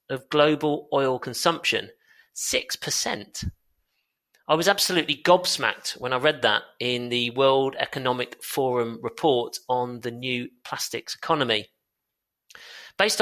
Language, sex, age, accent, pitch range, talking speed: English, male, 40-59, British, 130-170 Hz, 115 wpm